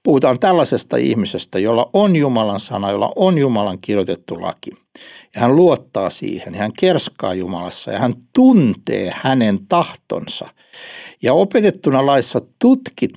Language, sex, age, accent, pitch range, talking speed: Finnish, male, 60-79, native, 115-175 Hz, 125 wpm